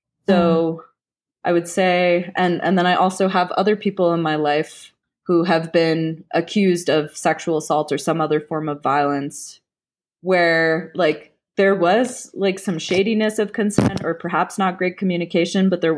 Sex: female